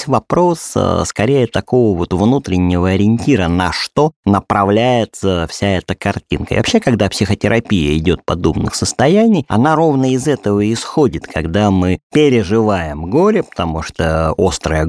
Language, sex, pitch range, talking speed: Russian, male, 85-120 Hz, 130 wpm